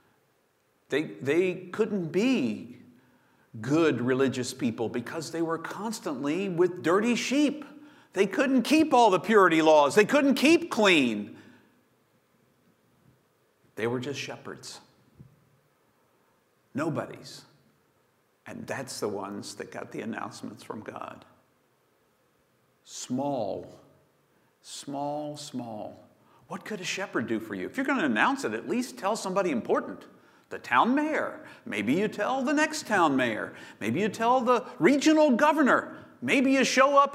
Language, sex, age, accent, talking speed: English, male, 50-69, American, 130 wpm